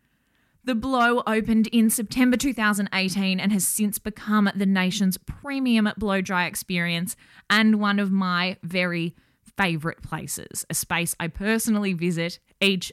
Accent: Australian